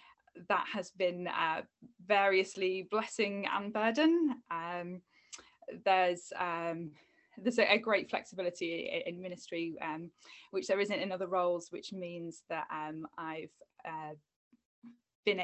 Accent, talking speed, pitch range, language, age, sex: British, 125 wpm, 165-200 Hz, English, 10-29, female